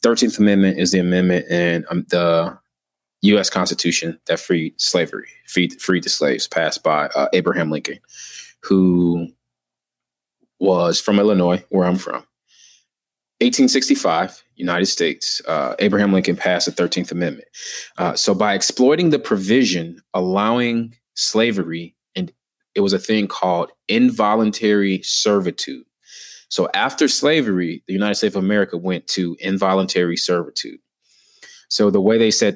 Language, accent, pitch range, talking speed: English, American, 90-105 Hz, 135 wpm